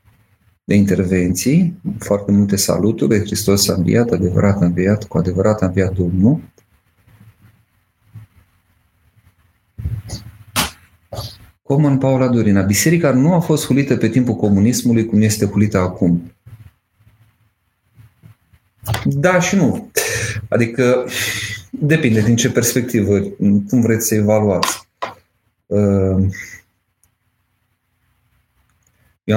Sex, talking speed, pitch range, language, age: male, 90 wpm, 100-115 Hz, Romanian, 40-59